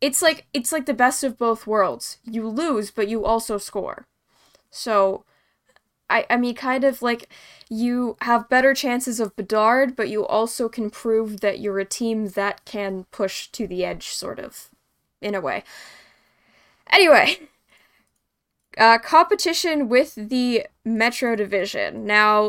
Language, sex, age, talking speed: English, female, 10-29, 150 wpm